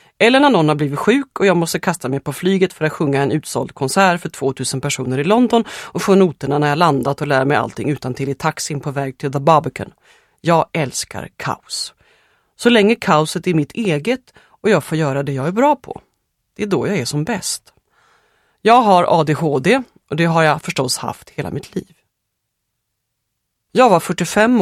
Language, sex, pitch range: Swedish, female, 140-190 Hz